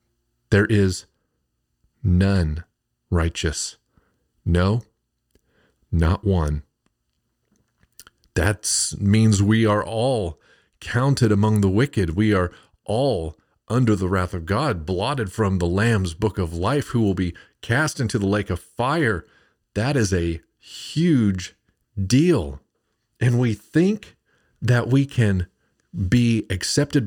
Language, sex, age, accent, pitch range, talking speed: English, male, 40-59, American, 90-115 Hz, 115 wpm